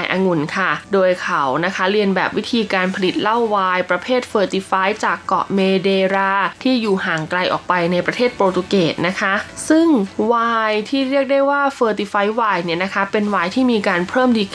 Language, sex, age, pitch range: Thai, female, 20-39, 180-225 Hz